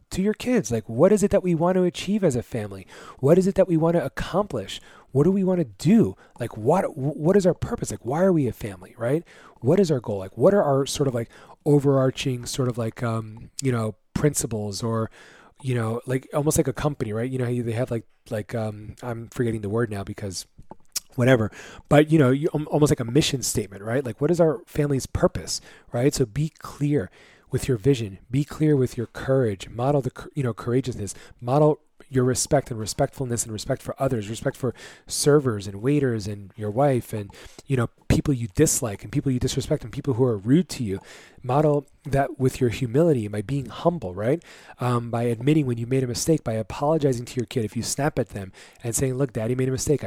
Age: 30-49